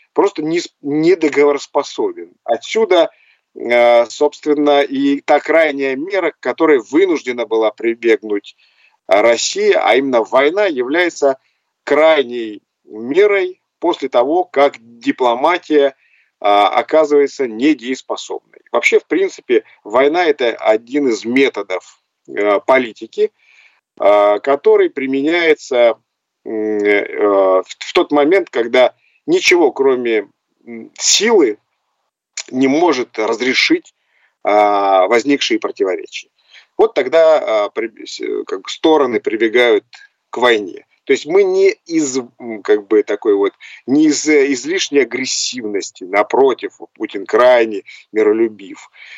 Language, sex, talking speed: Russian, male, 95 wpm